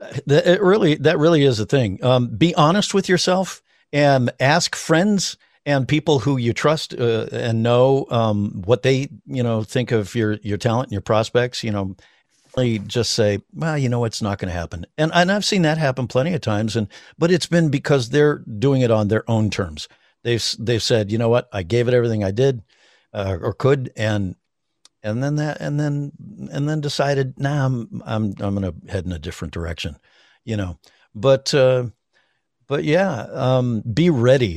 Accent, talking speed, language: American, 200 wpm, English